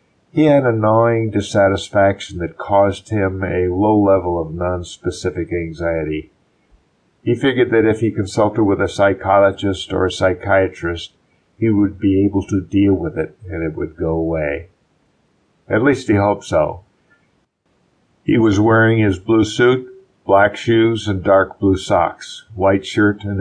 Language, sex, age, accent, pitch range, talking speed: English, male, 50-69, American, 90-105 Hz, 150 wpm